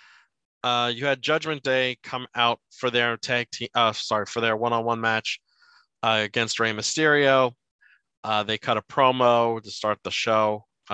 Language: English